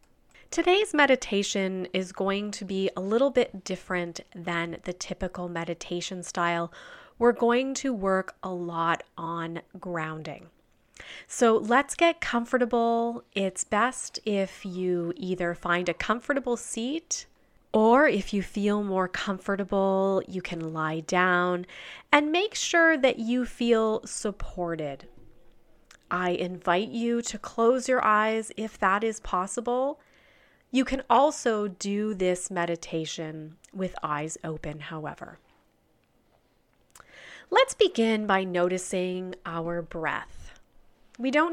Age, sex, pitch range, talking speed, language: 30-49, female, 175-240 Hz, 120 wpm, English